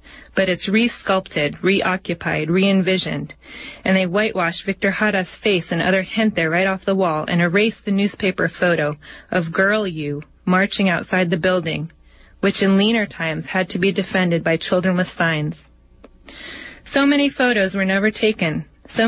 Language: English